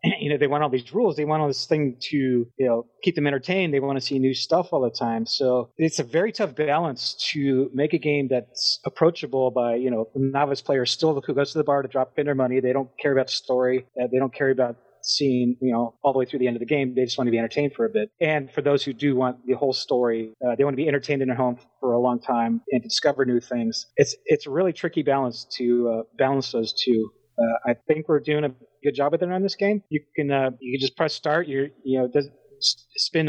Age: 30-49